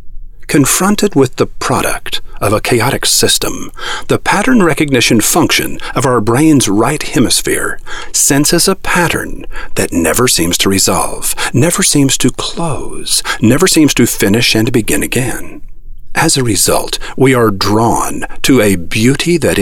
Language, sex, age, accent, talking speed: English, male, 50-69, American, 140 wpm